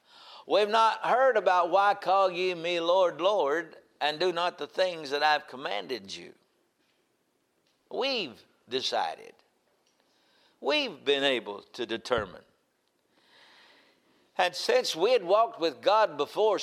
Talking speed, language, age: 125 wpm, English, 60-79